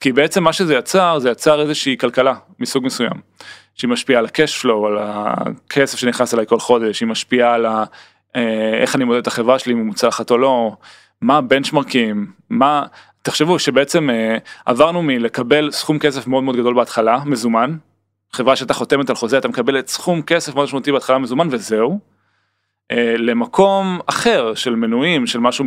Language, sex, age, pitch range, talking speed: Hebrew, male, 20-39, 115-145 Hz, 165 wpm